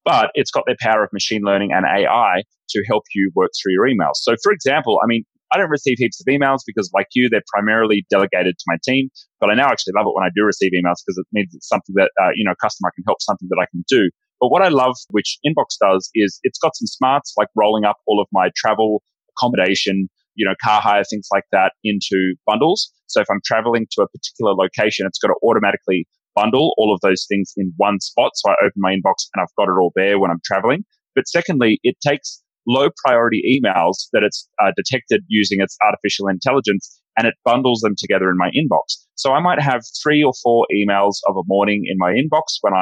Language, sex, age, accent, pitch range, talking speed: English, male, 20-39, Australian, 100-130 Hz, 235 wpm